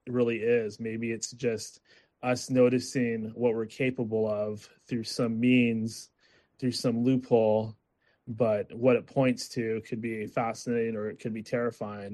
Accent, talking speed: American, 150 wpm